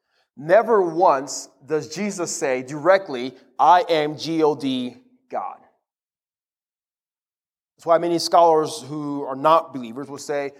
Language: English